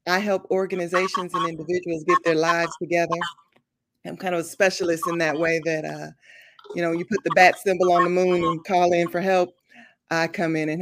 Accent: American